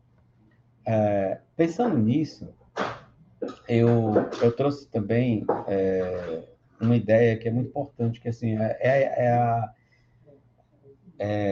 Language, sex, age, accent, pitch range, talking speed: Portuguese, male, 50-69, Brazilian, 105-125 Hz, 115 wpm